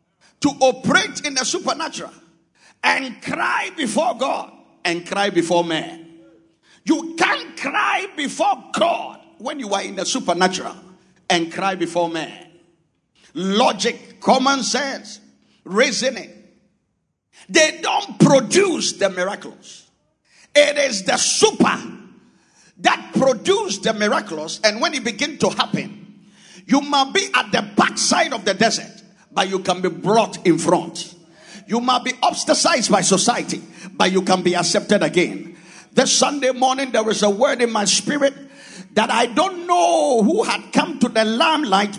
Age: 50-69